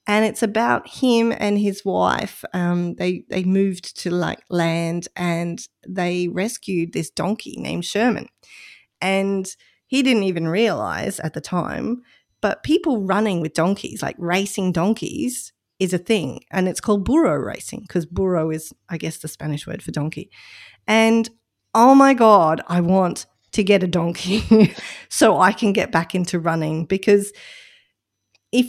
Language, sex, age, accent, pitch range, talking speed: English, female, 30-49, Australian, 170-215 Hz, 155 wpm